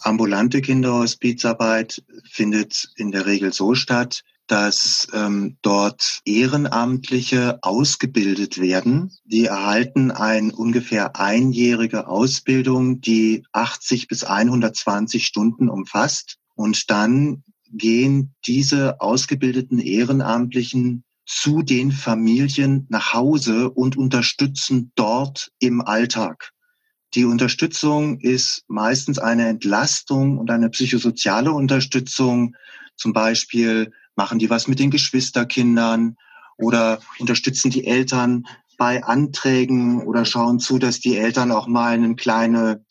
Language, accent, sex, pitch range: German, German, male, 115-130 Hz